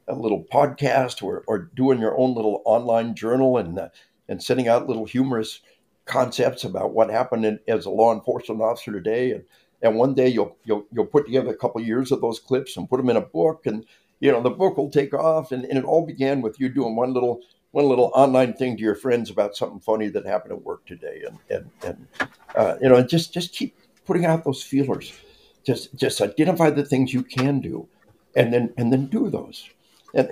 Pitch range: 110-140 Hz